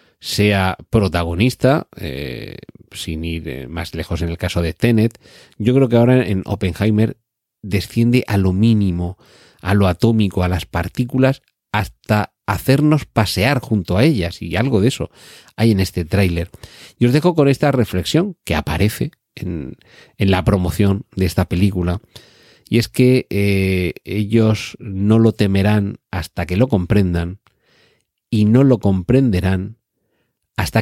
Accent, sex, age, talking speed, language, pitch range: Spanish, male, 40-59, 145 wpm, Spanish, 90-110 Hz